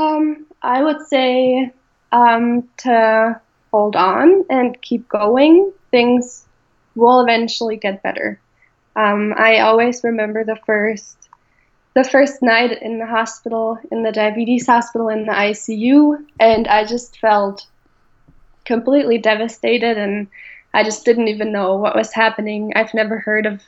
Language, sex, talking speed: English, female, 135 wpm